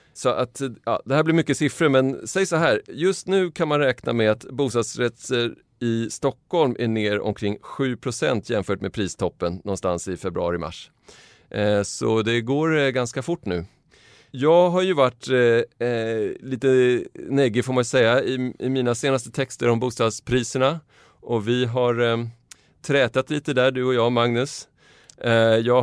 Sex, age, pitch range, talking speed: male, 30-49, 115-130 Hz, 145 wpm